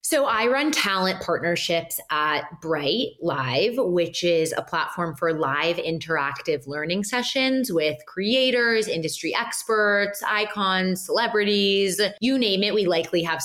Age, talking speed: 20-39, 130 wpm